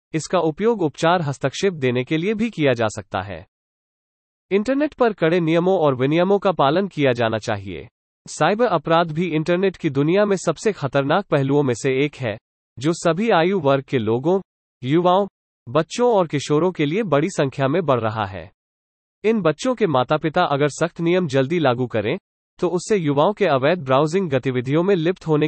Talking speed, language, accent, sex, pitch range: 125 wpm, English, Indian, male, 130-185 Hz